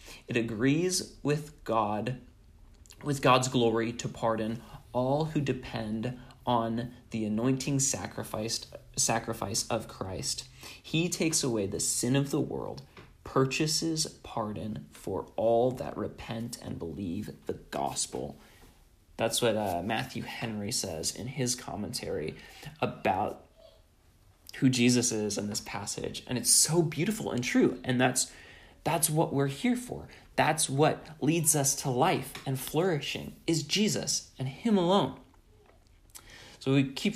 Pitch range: 110-140 Hz